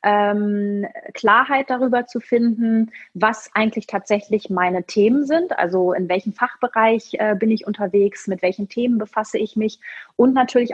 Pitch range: 210-265 Hz